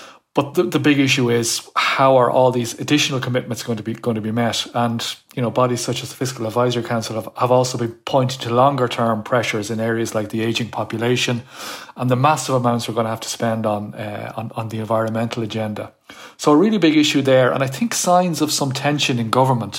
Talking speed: 230 wpm